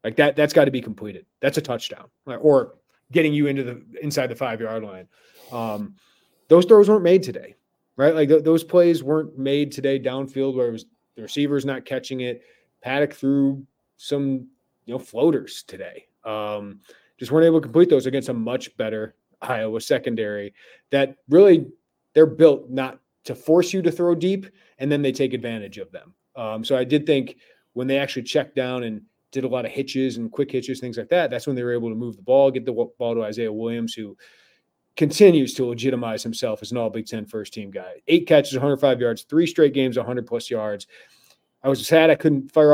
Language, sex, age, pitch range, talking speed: English, male, 30-49, 115-145 Hz, 210 wpm